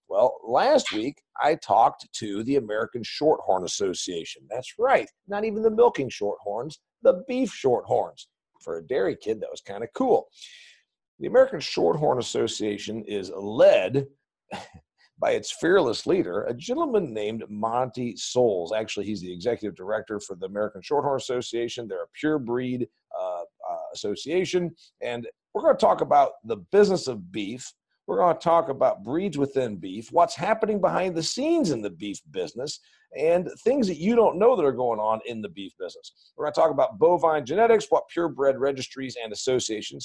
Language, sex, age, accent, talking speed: English, male, 50-69, American, 170 wpm